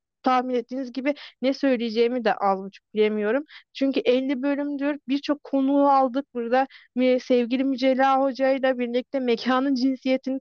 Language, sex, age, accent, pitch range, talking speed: Turkish, female, 40-59, native, 240-285 Hz, 120 wpm